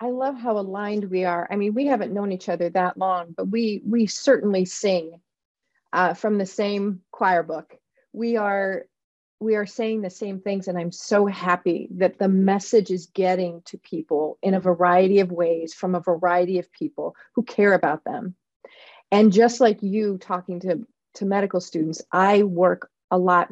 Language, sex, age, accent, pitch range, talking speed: English, female, 40-59, American, 180-210 Hz, 180 wpm